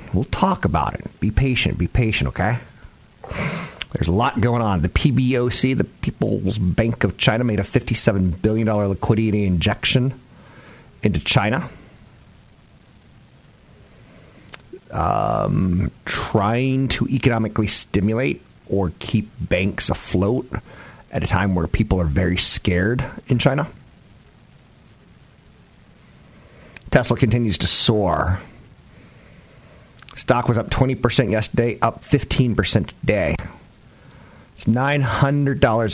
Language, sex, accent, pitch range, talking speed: English, male, American, 100-130 Hz, 100 wpm